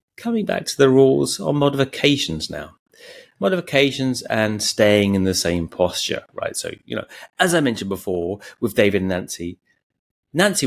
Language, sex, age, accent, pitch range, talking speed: English, male, 30-49, British, 90-115 Hz, 155 wpm